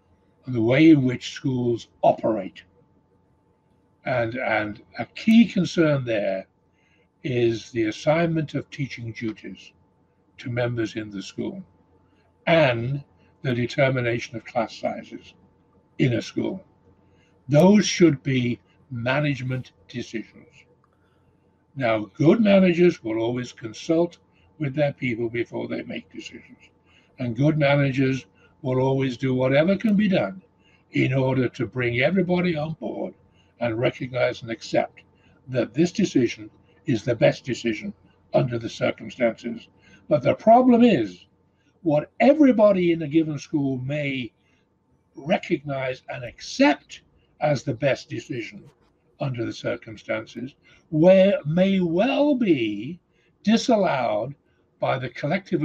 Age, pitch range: 60-79, 110-170 Hz